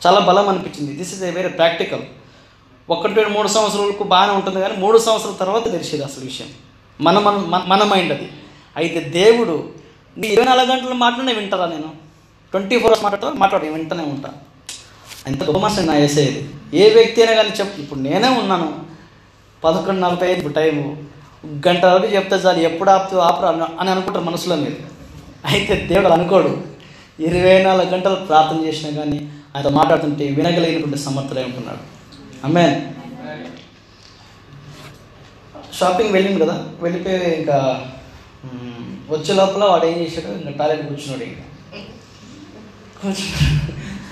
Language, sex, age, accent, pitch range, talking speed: Telugu, male, 20-39, native, 145-195 Hz, 130 wpm